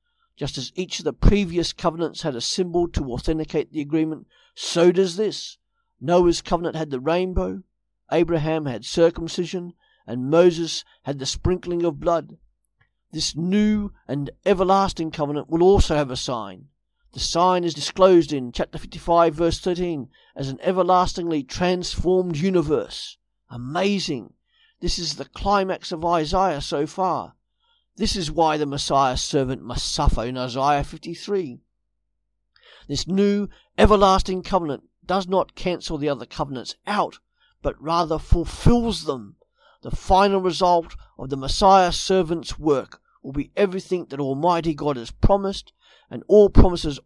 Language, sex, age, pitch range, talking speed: English, male, 50-69, 145-185 Hz, 140 wpm